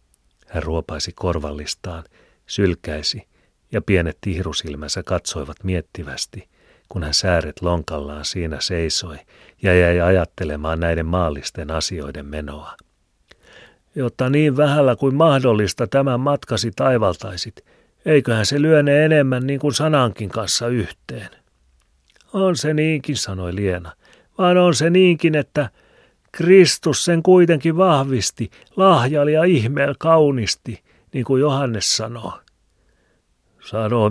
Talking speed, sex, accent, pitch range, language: 110 wpm, male, native, 85-135 Hz, Finnish